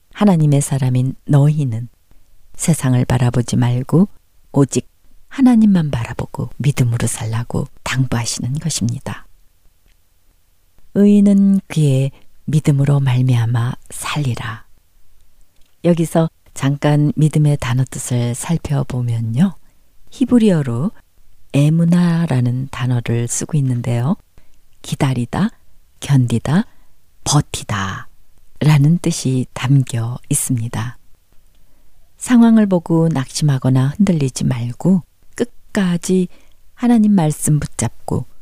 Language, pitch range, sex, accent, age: Korean, 120-165 Hz, female, native, 40-59